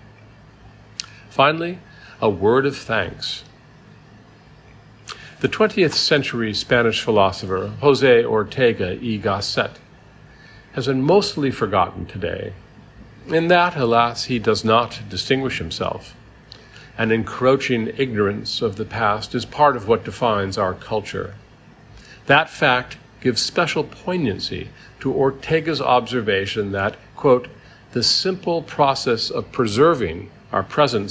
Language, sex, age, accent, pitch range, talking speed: English, male, 50-69, American, 105-135 Hz, 110 wpm